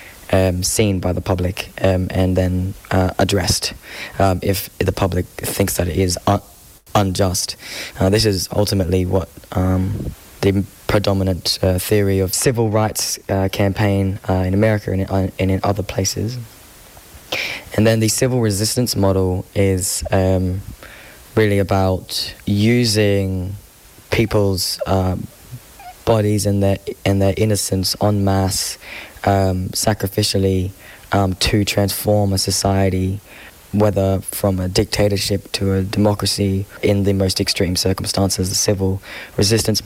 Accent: British